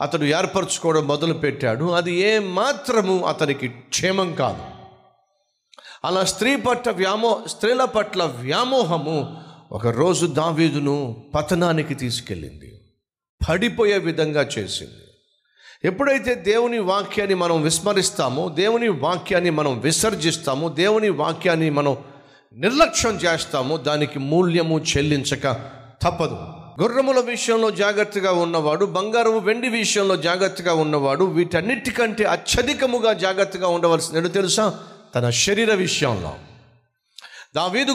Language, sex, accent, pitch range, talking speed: Telugu, male, native, 150-215 Hz, 80 wpm